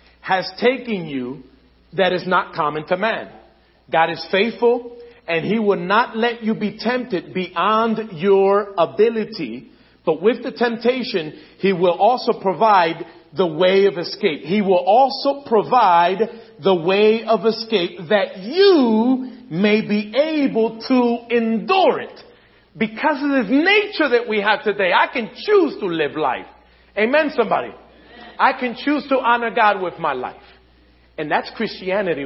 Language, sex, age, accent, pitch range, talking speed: English, male, 40-59, American, 170-235 Hz, 145 wpm